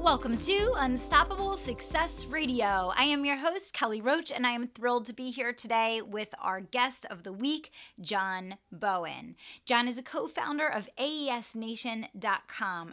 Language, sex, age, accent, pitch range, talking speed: English, female, 30-49, American, 190-255 Hz, 155 wpm